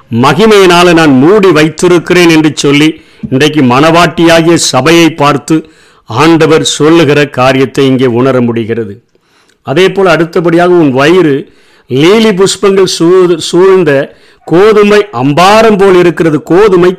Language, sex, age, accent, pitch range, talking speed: Tamil, male, 50-69, native, 150-185 Hz, 105 wpm